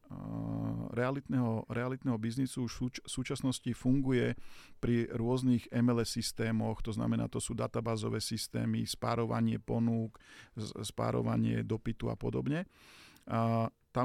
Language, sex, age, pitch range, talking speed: Slovak, male, 50-69, 115-130 Hz, 105 wpm